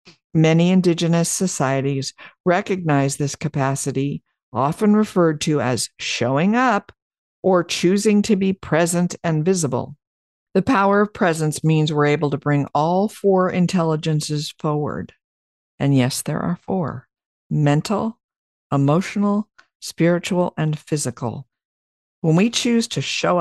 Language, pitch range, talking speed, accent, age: English, 140-180 Hz, 120 wpm, American, 50-69